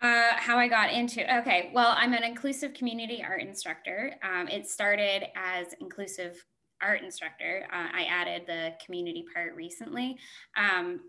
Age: 10-29